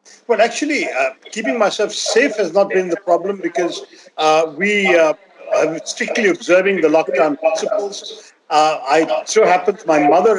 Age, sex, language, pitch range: 50-69, male, Hindi, 175-230 Hz